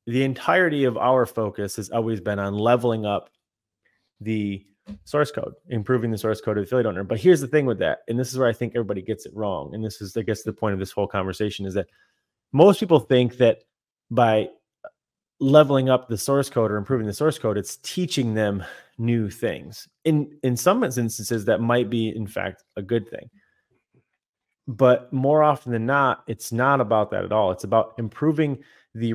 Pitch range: 105-130 Hz